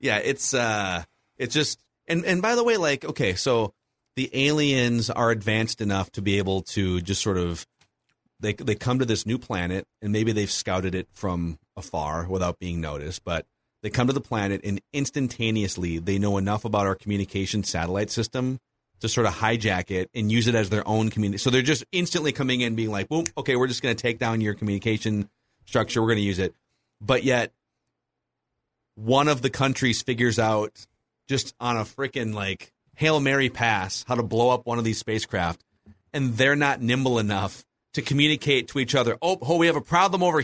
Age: 30-49